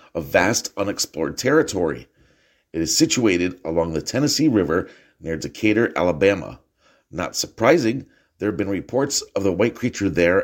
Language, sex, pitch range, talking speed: English, male, 85-125 Hz, 145 wpm